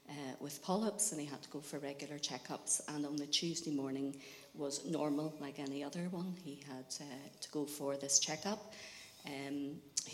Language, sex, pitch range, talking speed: English, female, 135-150 Hz, 190 wpm